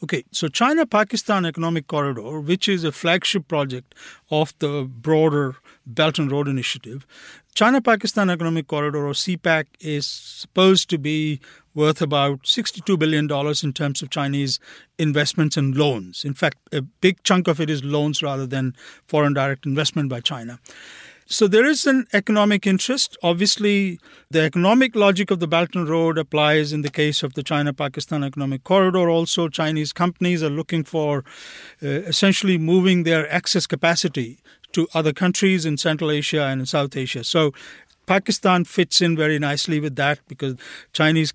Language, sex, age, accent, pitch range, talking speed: English, male, 50-69, Indian, 145-180 Hz, 160 wpm